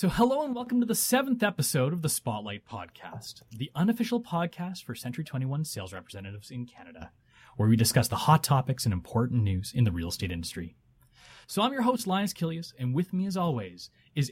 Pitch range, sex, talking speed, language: 115-180 Hz, male, 200 wpm, English